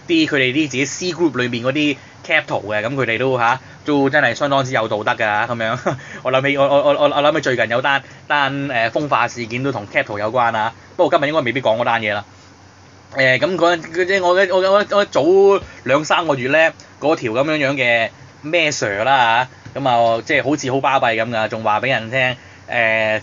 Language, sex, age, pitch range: Chinese, male, 20-39, 115-145 Hz